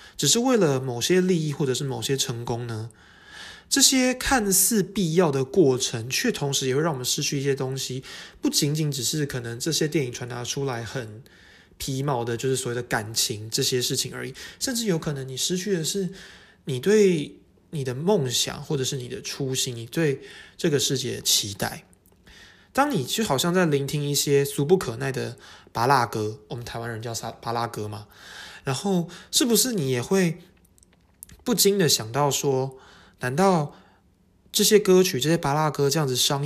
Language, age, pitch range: Chinese, 20-39, 125-175 Hz